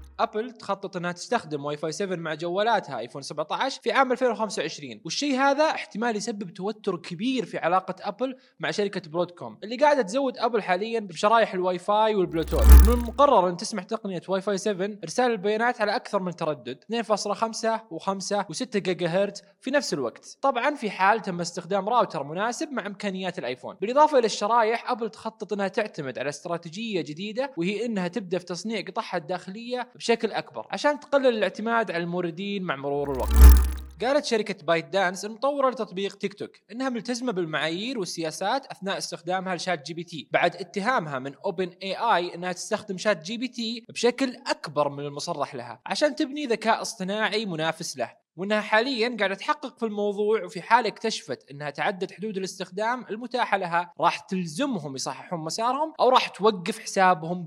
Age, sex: 20-39, male